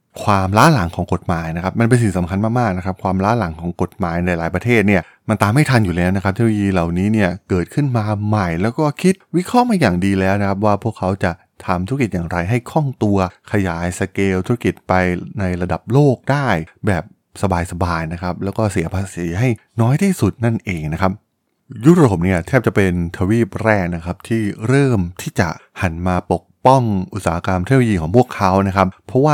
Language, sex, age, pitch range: Thai, male, 20-39, 90-120 Hz